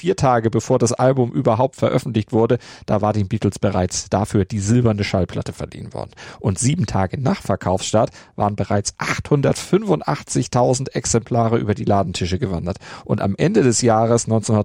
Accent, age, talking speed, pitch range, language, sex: German, 40-59, 150 wpm, 105-125 Hz, German, male